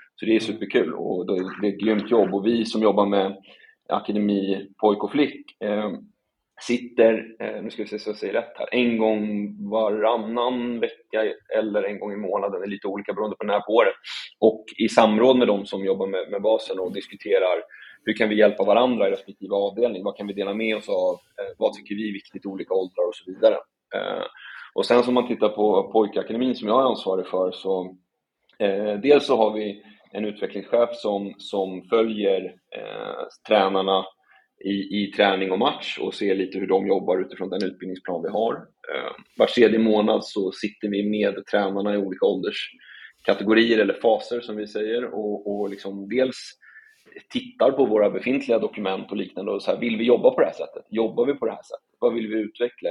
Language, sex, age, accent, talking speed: Swedish, male, 30-49, native, 200 wpm